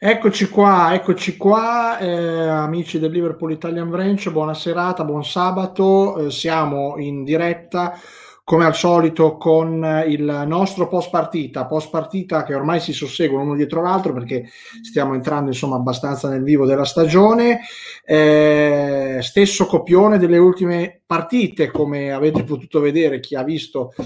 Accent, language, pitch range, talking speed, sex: native, Italian, 145-180 Hz, 140 wpm, male